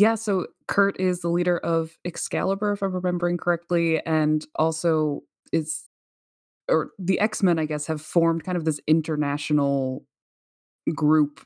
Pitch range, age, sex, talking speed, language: 145-175 Hz, 20-39, female, 140 wpm, English